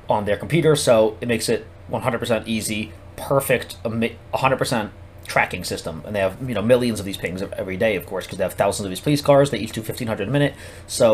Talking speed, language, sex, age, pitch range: 220 wpm, English, male, 30-49, 100-125 Hz